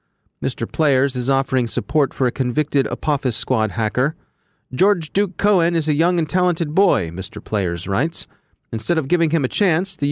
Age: 30-49